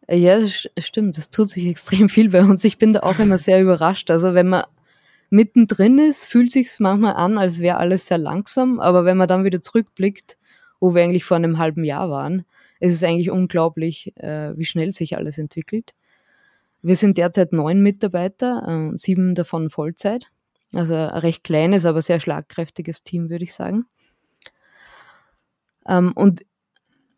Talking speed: 165 wpm